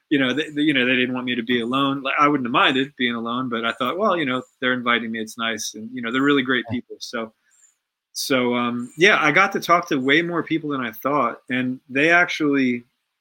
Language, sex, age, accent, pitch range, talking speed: English, male, 30-49, American, 115-145 Hz, 250 wpm